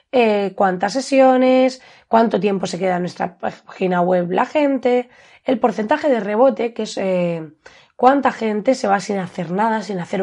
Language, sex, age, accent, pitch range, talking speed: Spanish, female, 20-39, Spanish, 180-250 Hz, 170 wpm